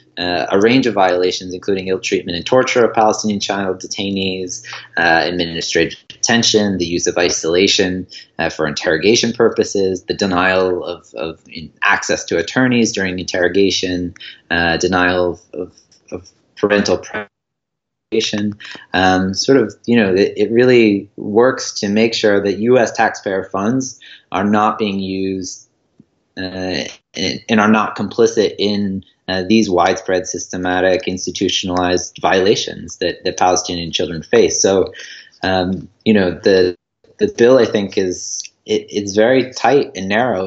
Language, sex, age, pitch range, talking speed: English, male, 30-49, 90-105 Hz, 140 wpm